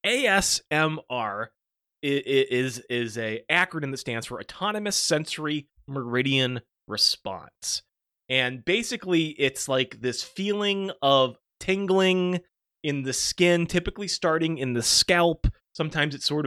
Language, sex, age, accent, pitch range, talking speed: English, male, 30-49, American, 125-165 Hz, 115 wpm